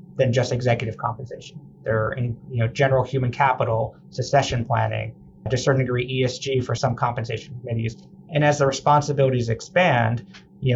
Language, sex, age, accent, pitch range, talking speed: English, male, 30-49, American, 115-135 Hz, 155 wpm